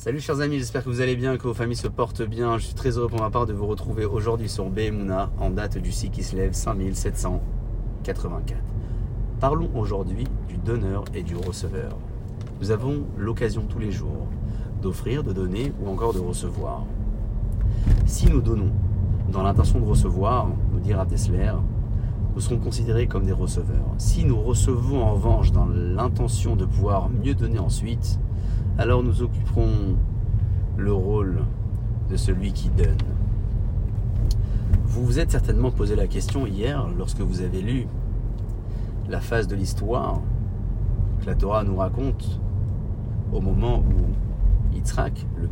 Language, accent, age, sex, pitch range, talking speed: French, French, 30-49, male, 95-115 Hz, 155 wpm